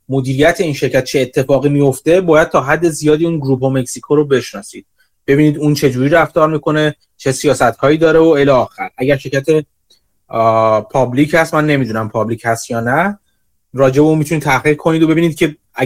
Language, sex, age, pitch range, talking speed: Persian, male, 30-49, 135-160 Hz, 175 wpm